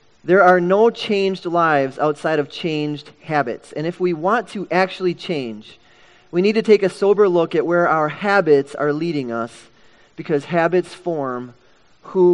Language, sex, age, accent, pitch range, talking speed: English, male, 30-49, American, 150-190 Hz, 165 wpm